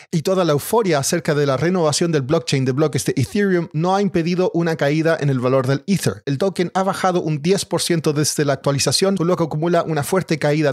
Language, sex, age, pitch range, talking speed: Spanish, male, 40-59, 140-170 Hz, 220 wpm